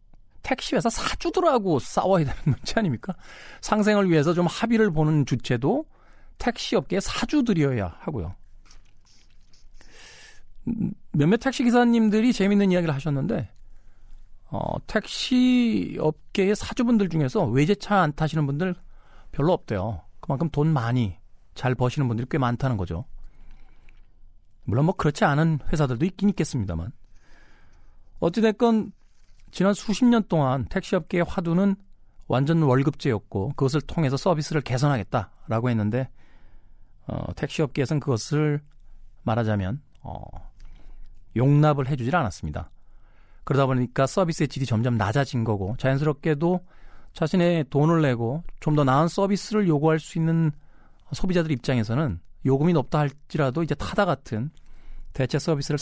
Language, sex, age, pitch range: Korean, male, 40-59, 110-175 Hz